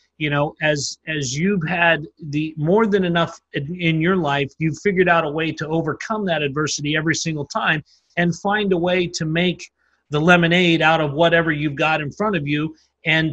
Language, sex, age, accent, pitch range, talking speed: English, male, 30-49, American, 155-185 Hz, 195 wpm